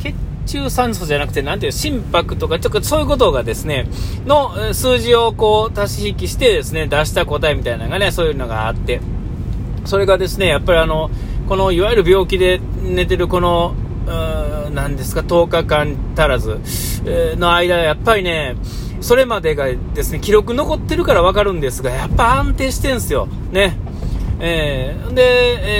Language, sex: Japanese, male